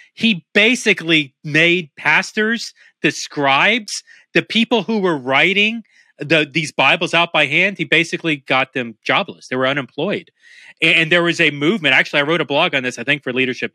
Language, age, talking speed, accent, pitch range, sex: English, 30-49, 180 wpm, American, 130-175 Hz, male